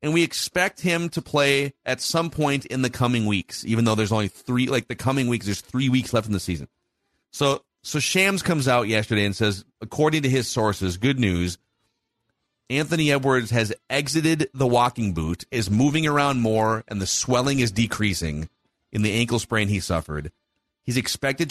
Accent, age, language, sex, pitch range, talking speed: American, 30-49, English, male, 105-150 Hz, 185 wpm